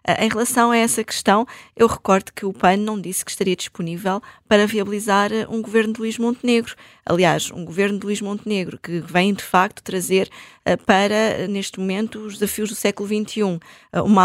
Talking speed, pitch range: 175 wpm, 180-215 Hz